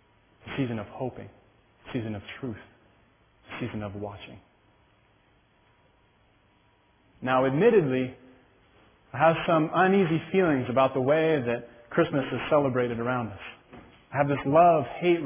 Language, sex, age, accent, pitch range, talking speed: English, male, 30-49, American, 120-160 Hz, 125 wpm